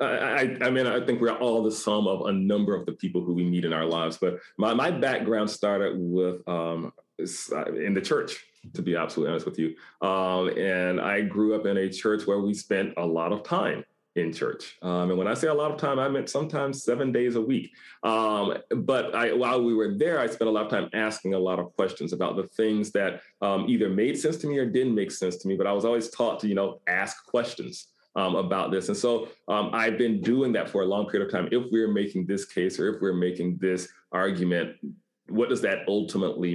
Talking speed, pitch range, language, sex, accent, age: 240 wpm, 90-110 Hz, English, male, American, 30-49